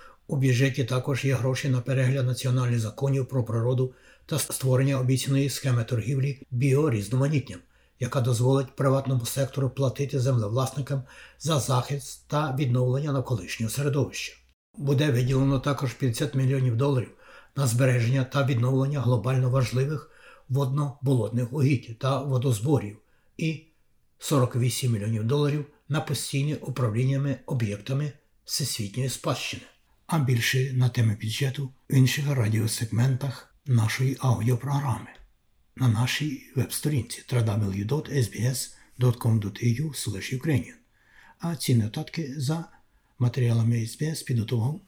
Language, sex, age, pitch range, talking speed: Ukrainian, male, 60-79, 120-140 Hz, 100 wpm